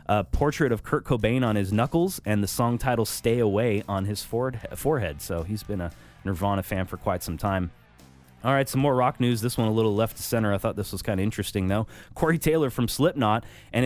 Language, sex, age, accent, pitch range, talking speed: English, male, 20-39, American, 105-135 Hz, 225 wpm